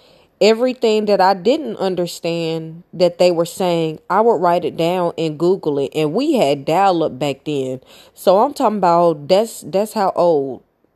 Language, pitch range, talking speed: English, 145-175 Hz, 175 wpm